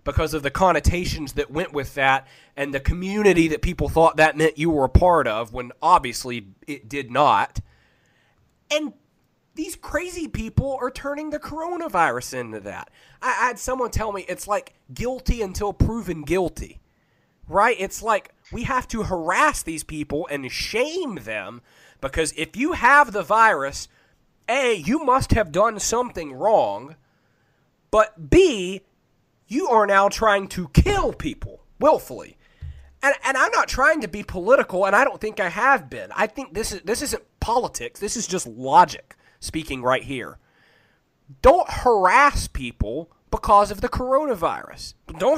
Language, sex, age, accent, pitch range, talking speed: English, male, 30-49, American, 145-230 Hz, 155 wpm